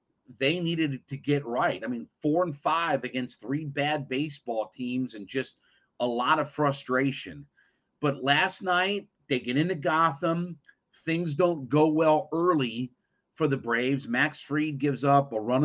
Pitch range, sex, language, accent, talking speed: 130-155 Hz, male, English, American, 160 wpm